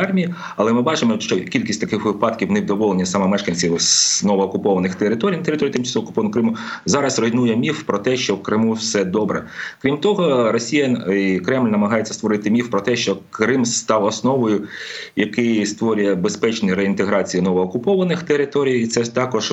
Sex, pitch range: male, 95-120 Hz